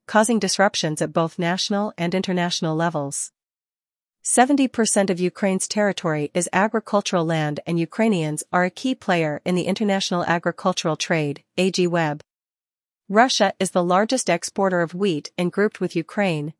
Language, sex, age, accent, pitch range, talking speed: English, female, 40-59, American, 165-205 Hz, 140 wpm